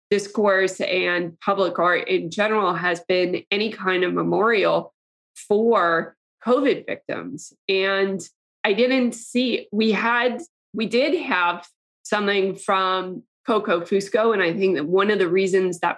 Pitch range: 190-250 Hz